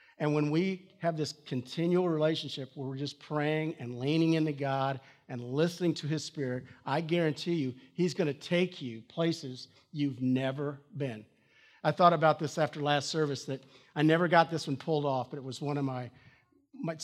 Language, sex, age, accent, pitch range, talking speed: English, male, 50-69, American, 140-200 Hz, 190 wpm